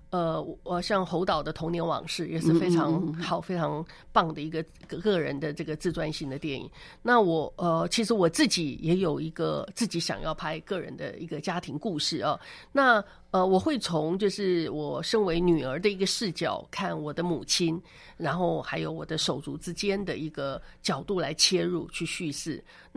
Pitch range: 160-195 Hz